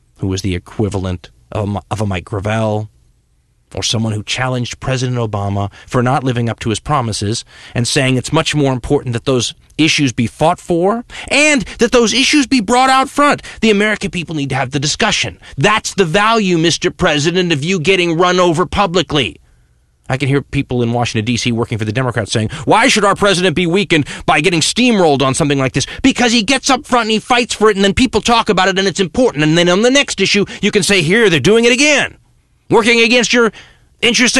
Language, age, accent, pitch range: English, 30-49, American, 130-215 Hz